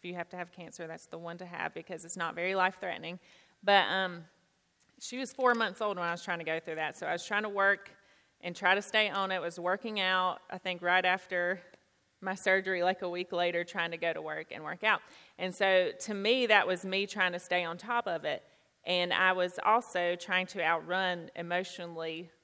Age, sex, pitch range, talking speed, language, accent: 30-49, female, 170-195 Hz, 225 wpm, English, American